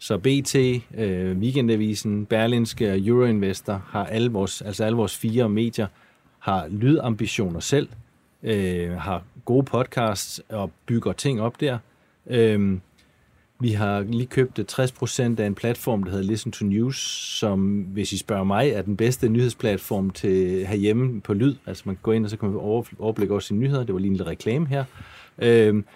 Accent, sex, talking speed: native, male, 175 wpm